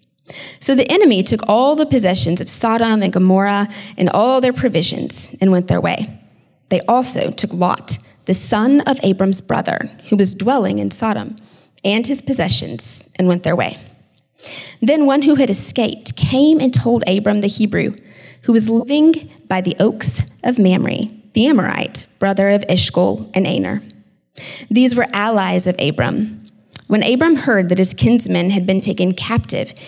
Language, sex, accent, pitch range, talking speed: English, female, American, 185-245 Hz, 165 wpm